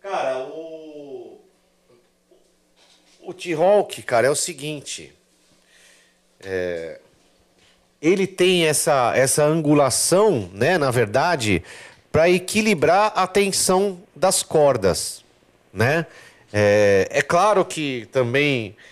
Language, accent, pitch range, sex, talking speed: Portuguese, Brazilian, 120-165 Hz, male, 95 wpm